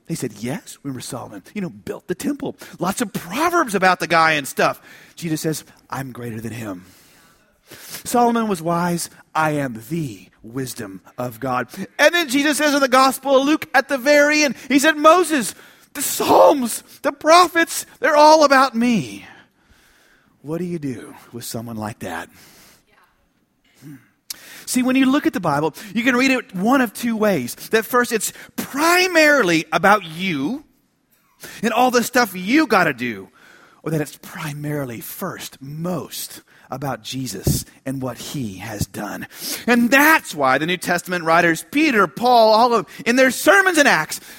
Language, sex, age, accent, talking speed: English, male, 40-59, American, 170 wpm